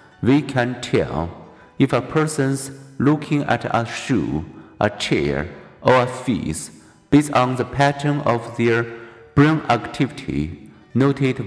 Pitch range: 115-145 Hz